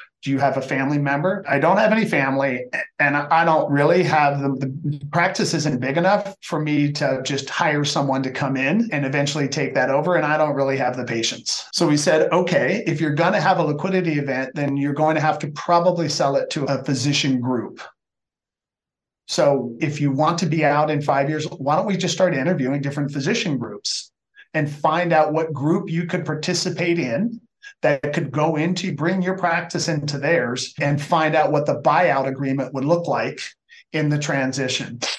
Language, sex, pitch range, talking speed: English, male, 140-170 Hz, 200 wpm